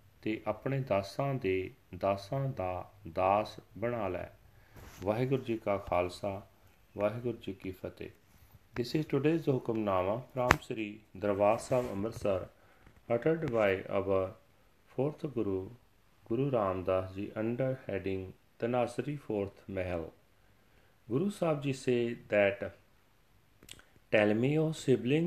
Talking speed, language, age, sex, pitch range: 105 wpm, Punjabi, 40-59, male, 100-130 Hz